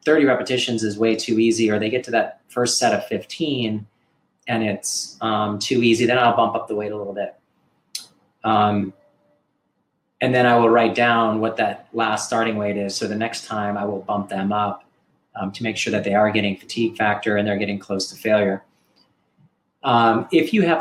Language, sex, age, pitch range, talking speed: English, male, 30-49, 105-125 Hz, 205 wpm